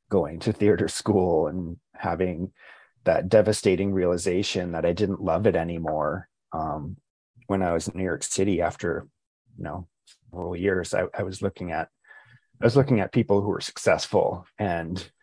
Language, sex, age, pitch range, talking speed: English, male, 30-49, 90-110 Hz, 165 wpm